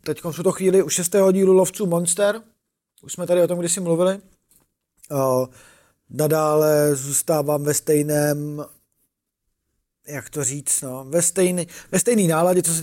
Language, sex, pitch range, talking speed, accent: Czech, male, 125-155 Hz, 145 wpm, native